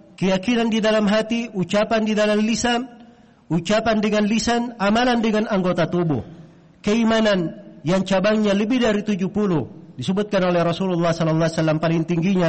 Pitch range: 165-205 Hz